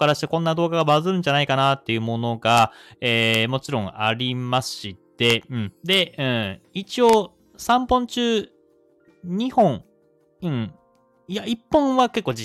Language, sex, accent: Japanese, male, native